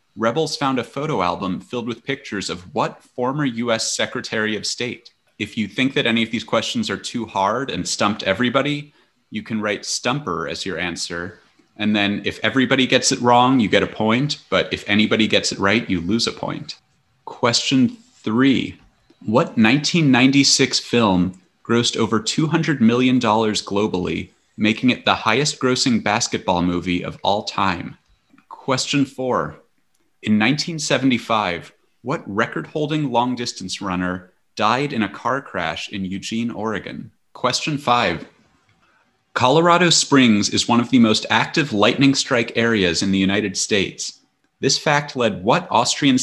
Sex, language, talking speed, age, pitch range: male, English, 150 wpm, 30-49, 100-130 Hz